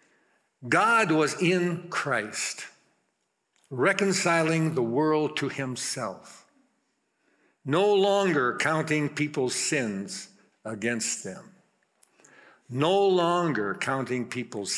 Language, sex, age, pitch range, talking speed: English, male, 60-79, 115-160 Hz, 80 wpm